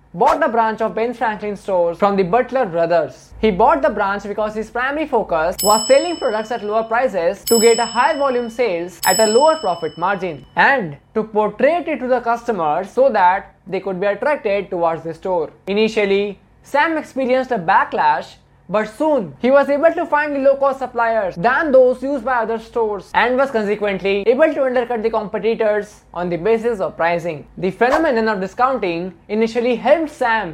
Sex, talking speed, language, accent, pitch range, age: male, 180 wpm, English, Indian, 185-250 Hz, 20-39